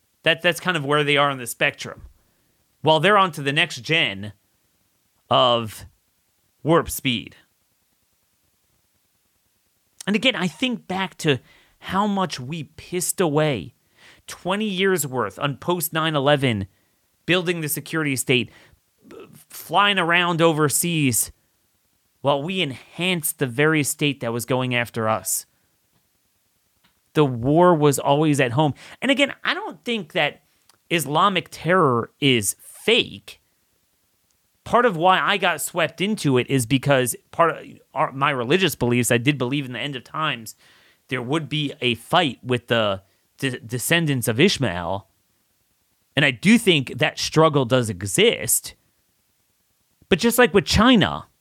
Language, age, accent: English, 30-49, American